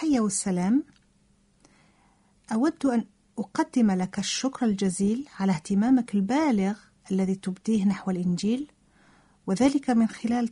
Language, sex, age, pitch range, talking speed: Italian, female, 50-69, 190-250 Hz, 105 wpm